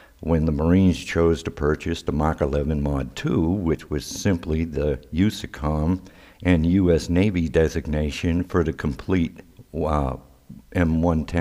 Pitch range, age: 80-95 Hz, 60-79